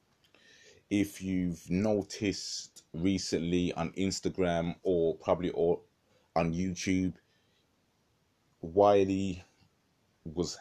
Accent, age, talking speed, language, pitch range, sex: British, 20-39, 70 wpm, English, 80-90 Hz, male